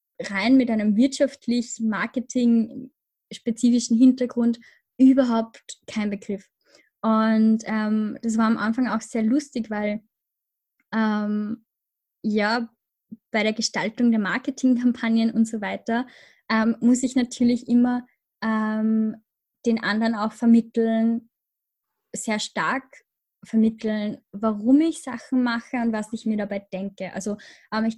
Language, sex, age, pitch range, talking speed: German, female, 10-29, 215-245 Hz, 115 wpm